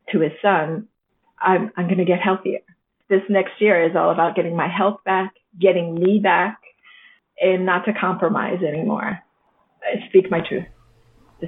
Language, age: English, 30-49